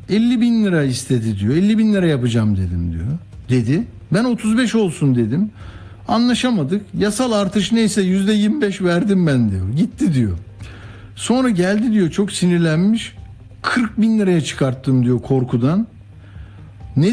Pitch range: 115-180 Hz